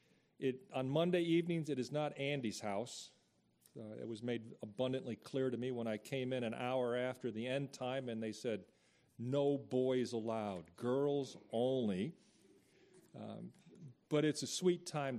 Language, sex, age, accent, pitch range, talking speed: English, male, 40-59, American, 115-140 Hz, 160 wpm